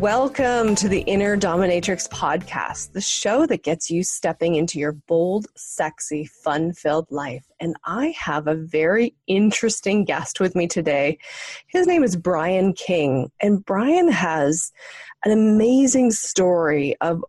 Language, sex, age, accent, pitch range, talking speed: English, female, 30-49, American, 160-210 Hz, 140 wpm